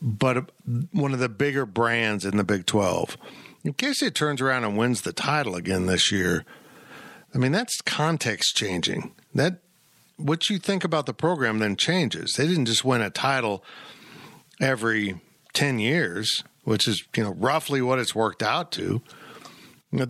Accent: American